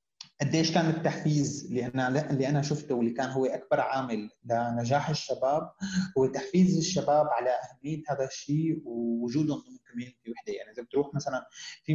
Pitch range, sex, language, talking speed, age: 130-170 Hz, male, Arabic, 140 wpm, 20-39